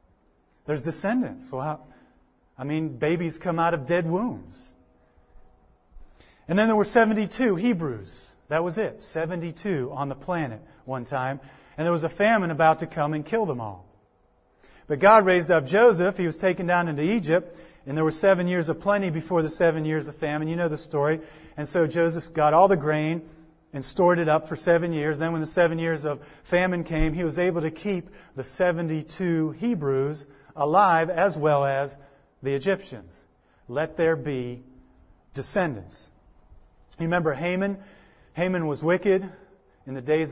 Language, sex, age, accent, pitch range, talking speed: English, male, 40-59, American, 135-170 Hz, 170 wpm